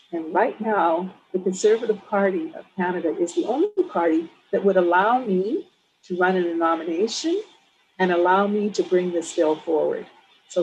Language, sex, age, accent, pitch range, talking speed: English, female, 50-69, American, 175-225 Hz, 165 wpm